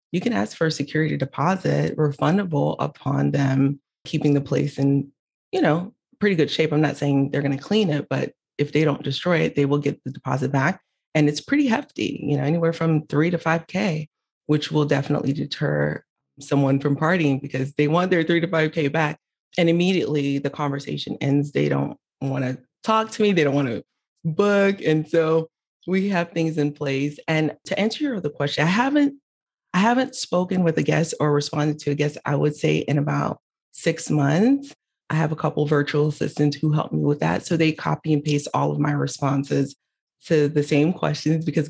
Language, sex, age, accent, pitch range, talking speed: English, female, 20-39, American, 145-170 Hz, 205 wpm